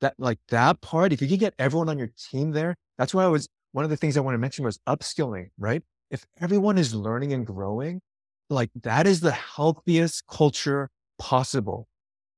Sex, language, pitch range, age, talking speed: male, English, 120-170 Hz, 30-49, 200 wpm